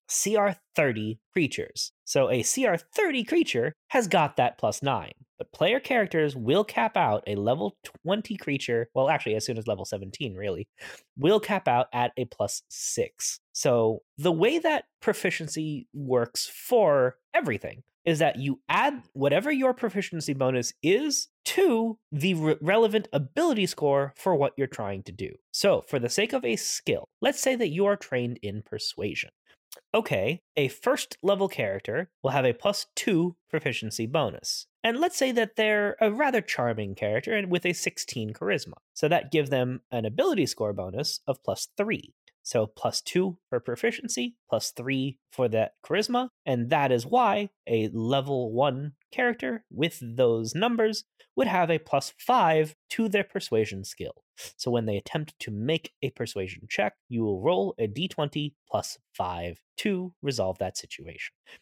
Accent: American